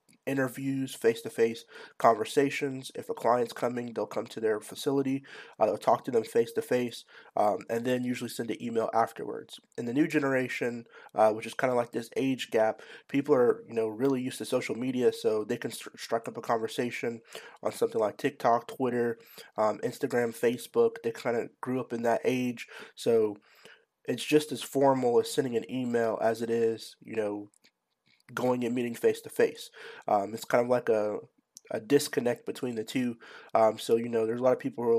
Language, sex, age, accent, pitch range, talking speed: English, male, 30-49, American, 115-145 Hz, 185 wpm